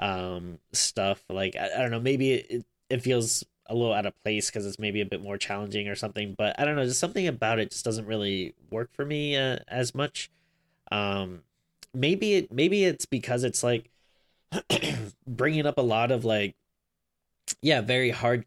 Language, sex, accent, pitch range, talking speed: English, male, American, 100-125 Hz, 190 wpm